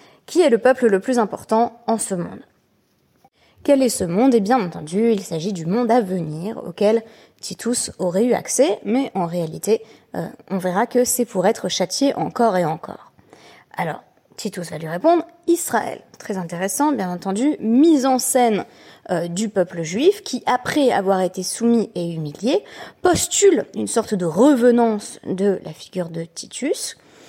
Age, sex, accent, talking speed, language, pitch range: 20-39, female, French, 165 wpm, French, 190-255 Hz